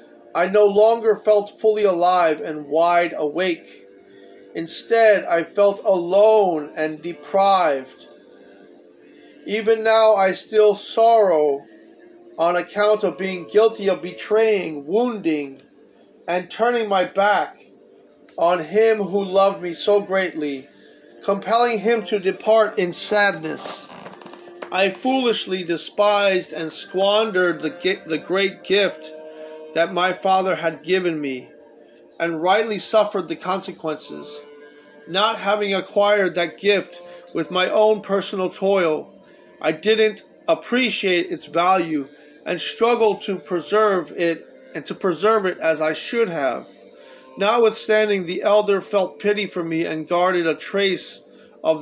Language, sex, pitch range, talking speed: English, male, 165-210 Hz, 120 wpm